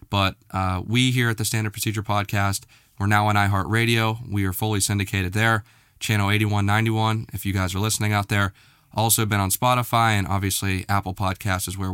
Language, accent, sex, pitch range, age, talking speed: English, American, male, 100-110 Hz, 20-39, 185 wpm